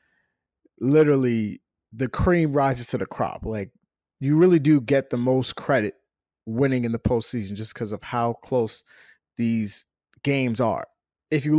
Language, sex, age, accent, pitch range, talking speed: English, male, 20-39, American, 115-145 Hz, 150 wpm